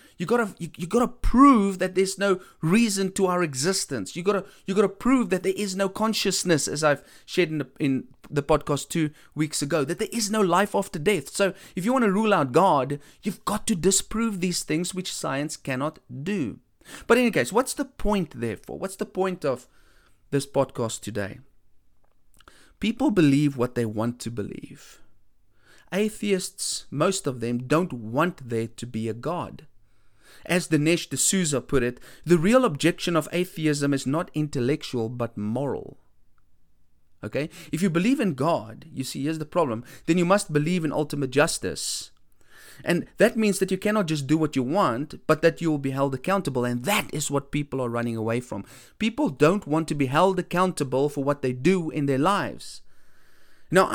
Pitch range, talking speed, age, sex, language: 130-190 Hz, 190 wpm, 30-49, male, English